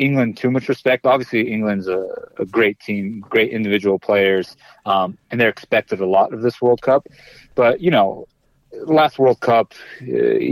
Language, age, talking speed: English, 30-49, 170 wpm